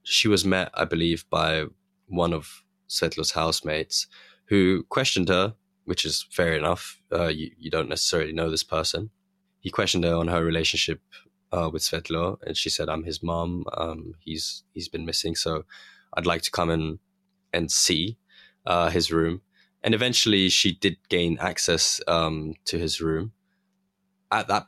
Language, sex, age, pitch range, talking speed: English, male, 20-39, 85-110 Hz, 165 wpm